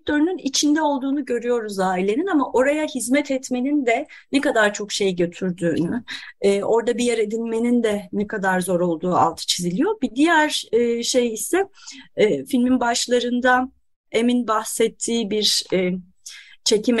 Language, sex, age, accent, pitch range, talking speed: Turkish, female, 30-49, native, 195-245 Hz, 125 wpm